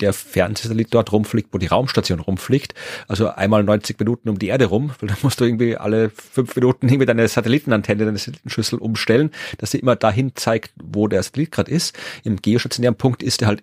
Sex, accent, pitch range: male, German, 105-120 Hz